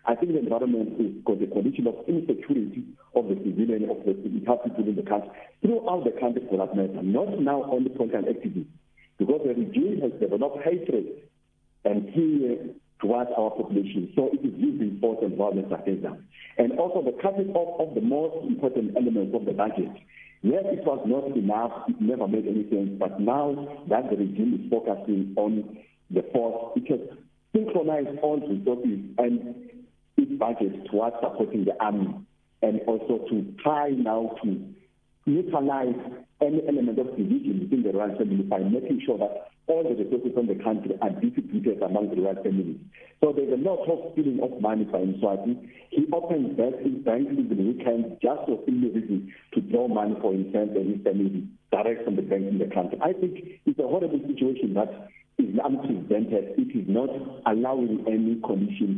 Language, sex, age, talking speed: English, male, 50-69, 180 wpm